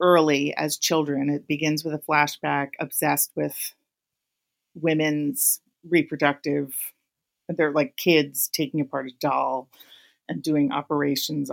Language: English